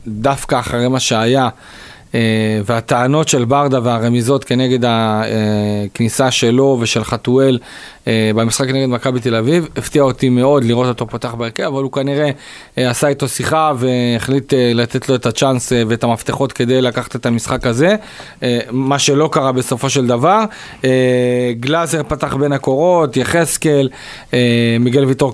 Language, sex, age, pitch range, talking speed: Hebrew, male, 40-59, 120-145 Hz, 150 wpm